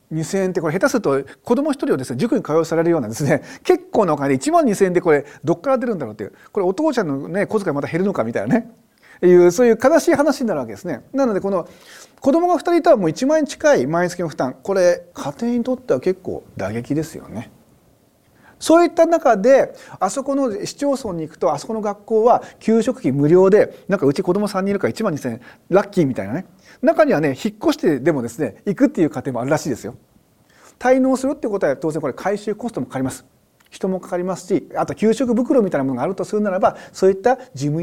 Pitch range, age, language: 160-270 Hz, 40-59, Japanese